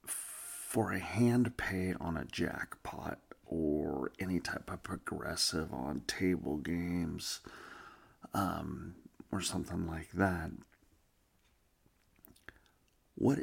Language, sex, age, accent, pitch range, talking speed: English, male, 40-59, American, 85-105 Hz, 95 wpm